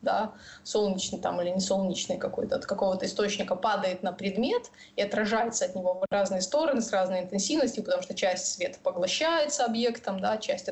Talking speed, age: 175 wpm, 20-39